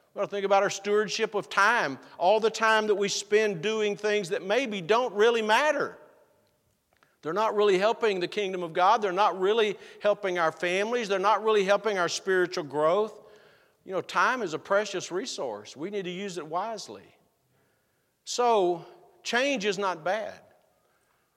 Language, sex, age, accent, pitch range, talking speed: English, male, 50-69, American, 150-205 Hz, 165 wpm